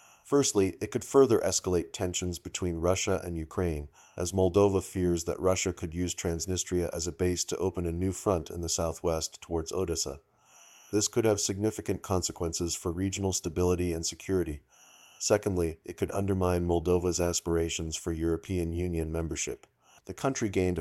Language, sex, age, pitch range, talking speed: English, male, 40-59, 80-95 Hz, 155 wpm